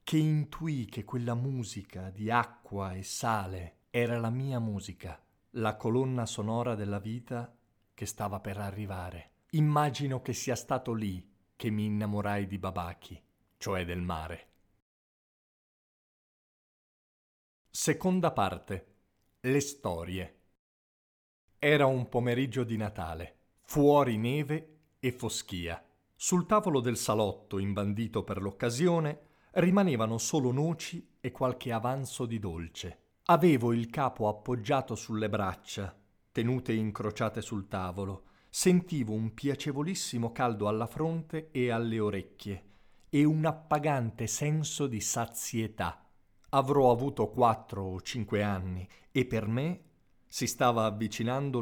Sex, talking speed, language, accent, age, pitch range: male, 115 wpm, Italian, native, 40-59, 100-130 Hz